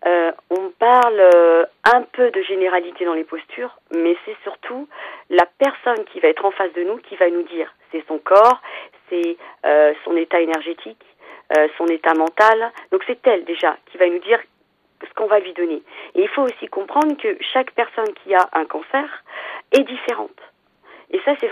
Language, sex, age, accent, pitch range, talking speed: French, female, 40-59, French, 180-260 Hz, 190 wpm